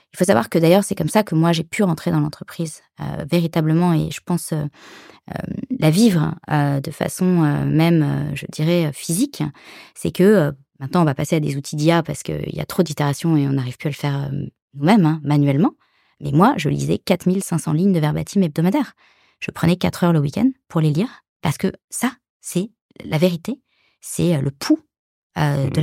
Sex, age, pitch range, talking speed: female, 20-39, 150-185 Hz, 210 wpm